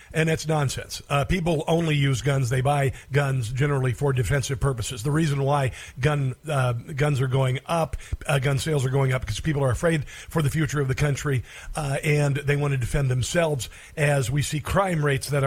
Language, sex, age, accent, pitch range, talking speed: English, male, 50-69, American, 130-170 Hz, 205 wpm